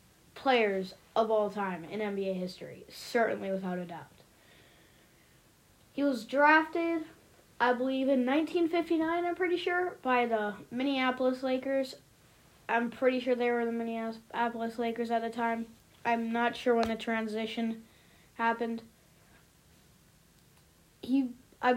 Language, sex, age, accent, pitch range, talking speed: English, female, 10-29, American, 205-255 Hz, 125 wpm